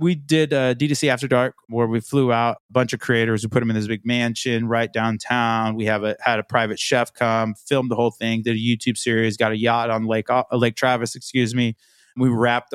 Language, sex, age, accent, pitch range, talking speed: English, male, 20-39, American, 110-125 Hz, 235 wpm